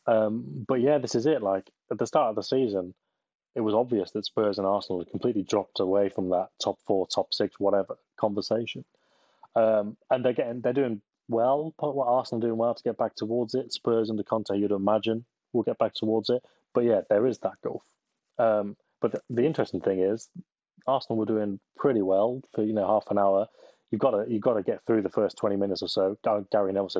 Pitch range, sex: 100-115 Hz, male